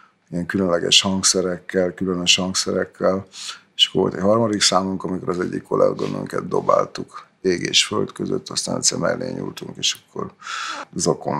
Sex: male